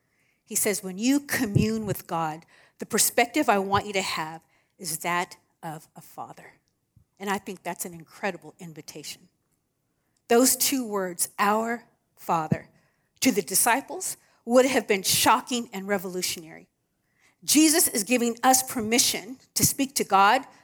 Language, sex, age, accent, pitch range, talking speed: English, female, 50-69, American, 185-250 Hz, 140 wpm